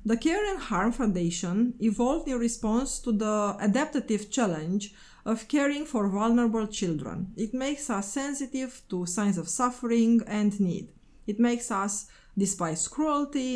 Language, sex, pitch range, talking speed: English, female, 200-240 Hz, 140 wpm